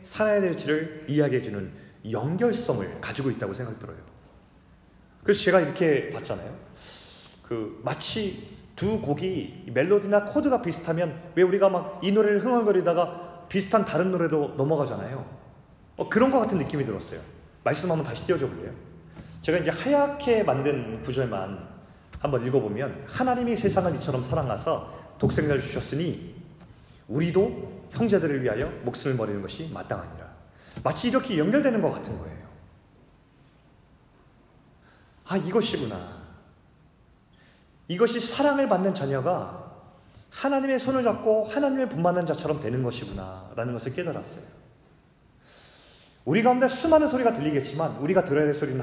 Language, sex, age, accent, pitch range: Korean, male, 30-49, native, 135-195 Hz